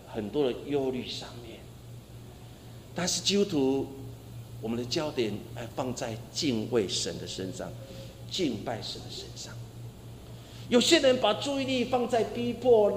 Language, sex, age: Chinese, male, 50-69